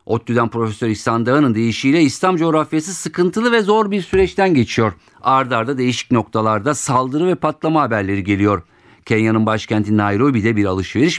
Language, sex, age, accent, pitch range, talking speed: Turkish, male, 50-69, native, 85-135 Hz, 140 wpm